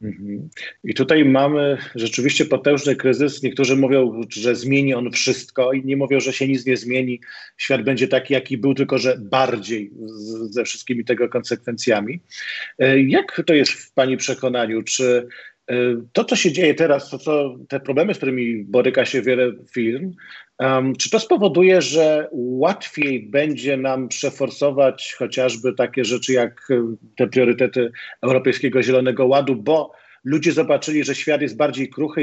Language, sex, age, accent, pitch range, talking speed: Polish, male, 40-59, native, 125-140 Hz, 145 wpm